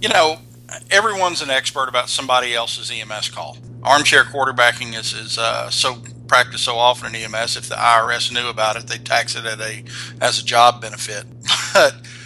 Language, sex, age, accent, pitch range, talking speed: English, male, 50-69, American, 120-135 Hz, 185 wpm